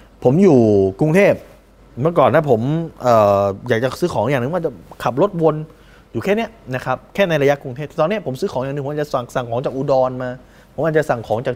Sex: male